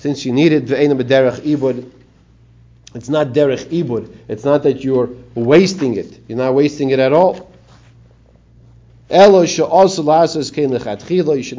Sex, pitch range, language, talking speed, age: male, 115-145 Hz, English, 155 wpm, 40-59